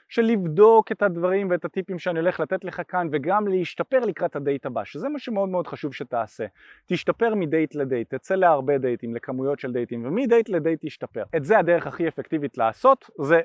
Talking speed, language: 180 wpm, Hebrew